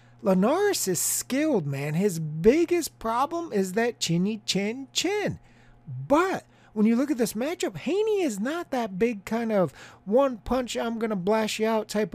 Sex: male